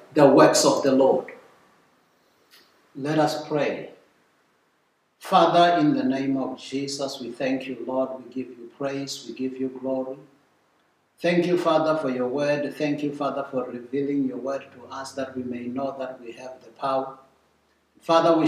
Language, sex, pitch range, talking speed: English, male, 130-150 Hz, 170 wpm